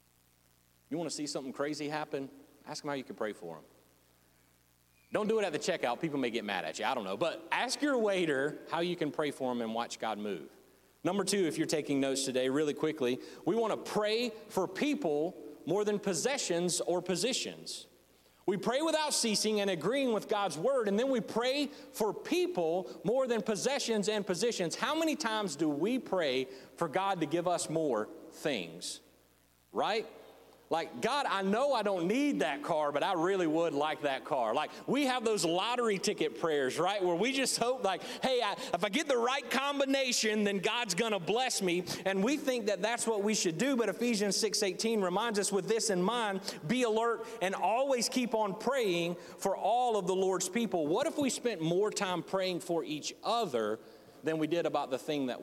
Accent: American